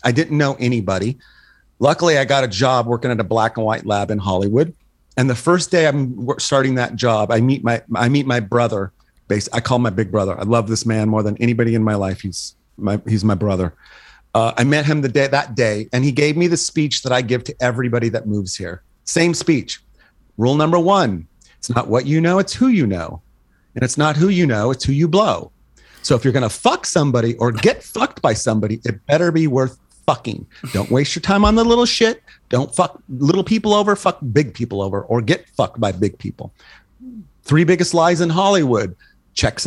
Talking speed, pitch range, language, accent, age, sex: 220 wpm, 115-175 Hz, English, American, 40-59, male